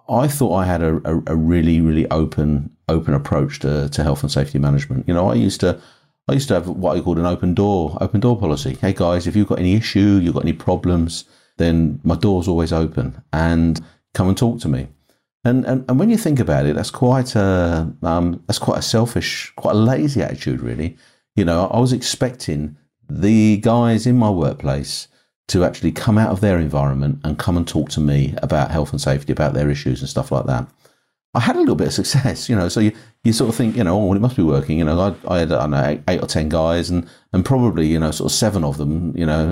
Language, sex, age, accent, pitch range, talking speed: English, male, 50-69, British, 80-110 Hz, 245 wpm